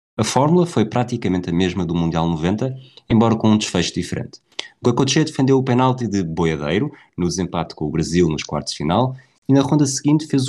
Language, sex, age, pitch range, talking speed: Portuguese, male, 20-39, 95-125 Hz, 195 wpm